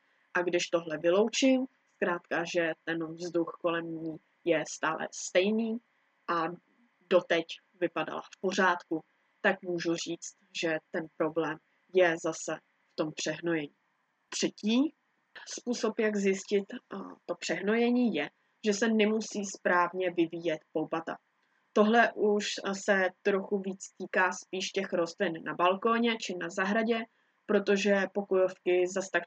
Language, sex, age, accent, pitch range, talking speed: Czech, female, 20-39, native, 170-205 Hz, 125 wpm